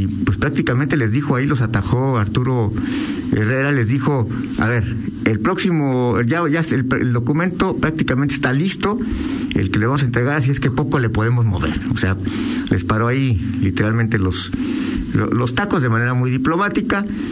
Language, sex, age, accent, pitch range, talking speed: Spanish, male, 50-69, Mexican, 105-140 Hz, 165 wpm